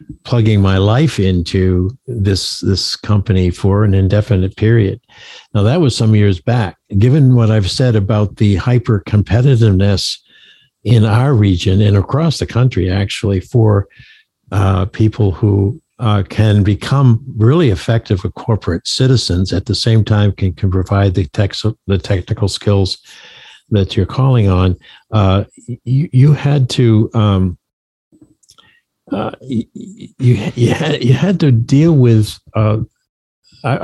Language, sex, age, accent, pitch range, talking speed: English, male, 60-79, American, 100-120 Hz, 135 wpm